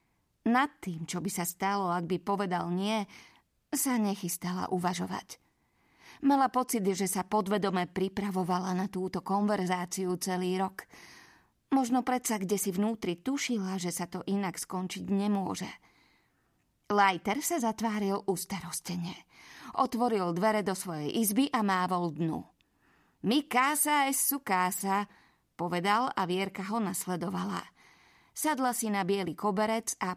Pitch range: 180-220 Hz